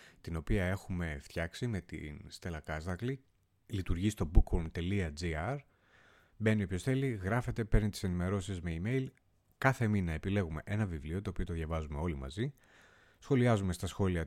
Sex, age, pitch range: male, 30-49, 85-105 Hz